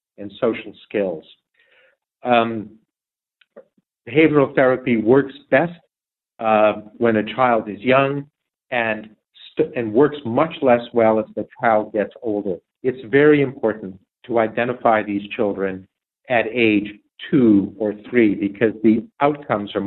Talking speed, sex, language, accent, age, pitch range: 125 wpm, male, English, American, 50-69, 105-125 Hz